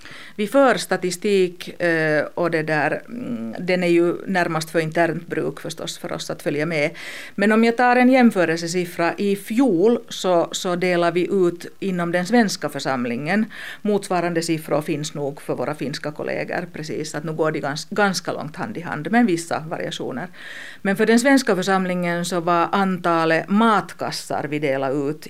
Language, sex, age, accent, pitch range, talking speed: Swedish, female, 50-69, Finnish, 160-200 Hz, 165 wpm